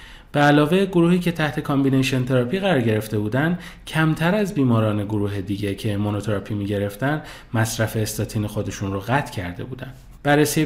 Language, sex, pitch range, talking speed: Persian, male, 105-150 Hz, 150 wpm